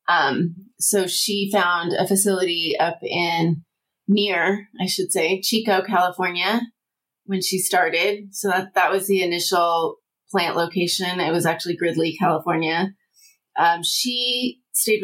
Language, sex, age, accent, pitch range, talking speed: English, female, 30-49, American, 180-205 Hz, 130 wpm